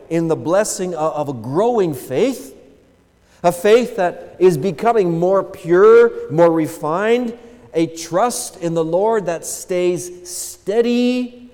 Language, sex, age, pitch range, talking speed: English, male, 40-59, 110-180 Hz, 125 wpm